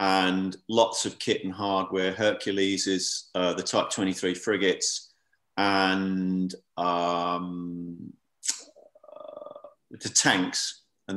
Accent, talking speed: British, 95 wpm